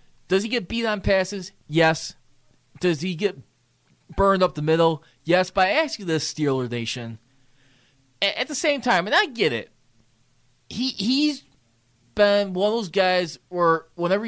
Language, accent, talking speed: English, American, 155 wpm